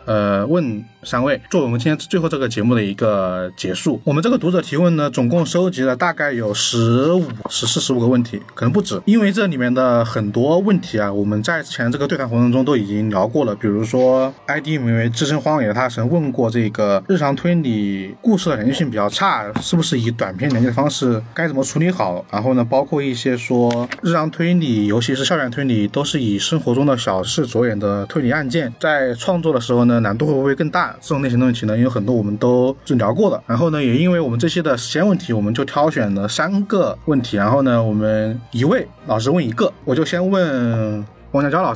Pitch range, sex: 115-160 Hz, male